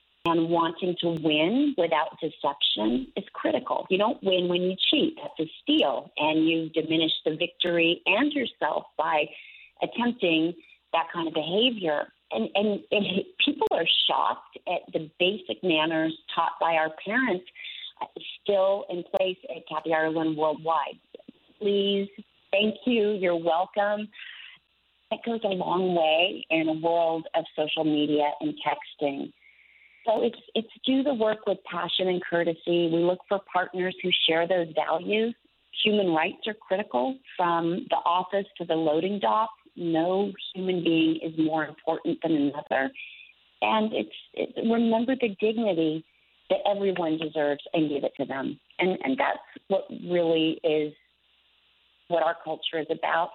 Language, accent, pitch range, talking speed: English, American, 160-205 Hz, 150 wpm